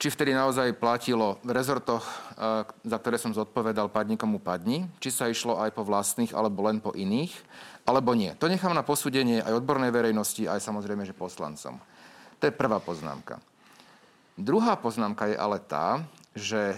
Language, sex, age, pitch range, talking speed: Slovak, male, 40-59, 110-135 Hz, 160 wpm